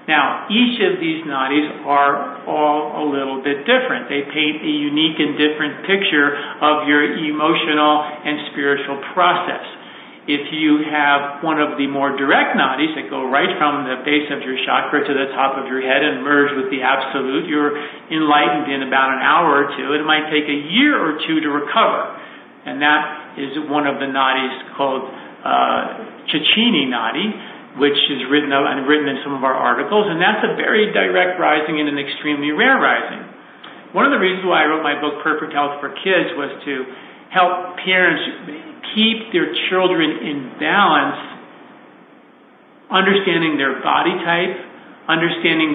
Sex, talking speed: male, 170 wpm